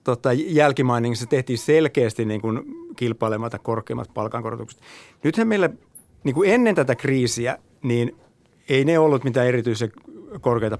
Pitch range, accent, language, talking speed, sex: 120-170 Hz, native, Finnish, 115 wpm, male